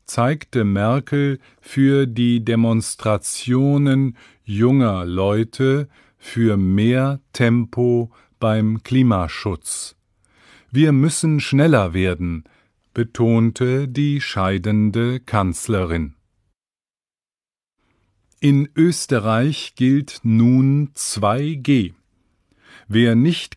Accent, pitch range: German, 105-135 Hz